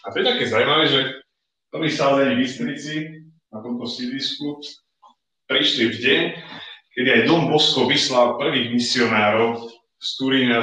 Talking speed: 140 wpm